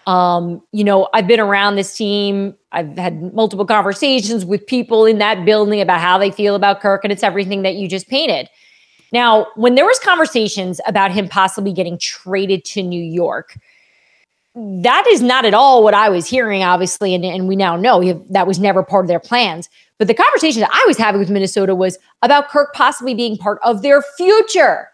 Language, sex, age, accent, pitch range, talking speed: English, female, 30-49, American, 200-260 Hz, 200 wpm